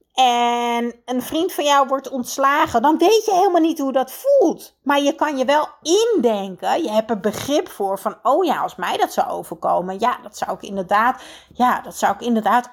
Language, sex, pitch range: Dutch, female, 215-295 Hz